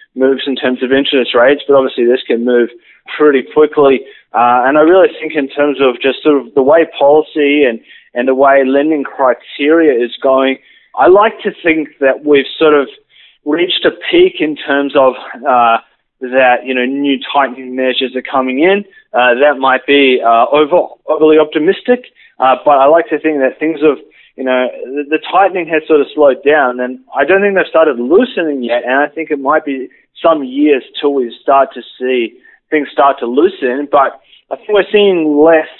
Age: 20-39